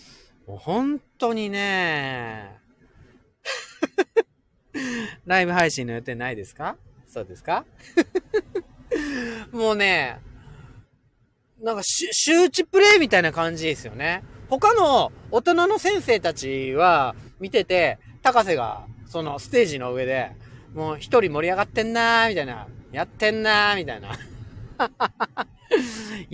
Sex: male